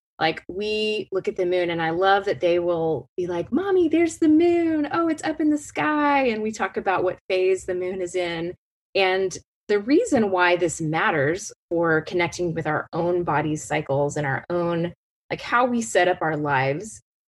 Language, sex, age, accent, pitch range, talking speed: English, female, 20-39, American, 170-225 Hz, 200 wpm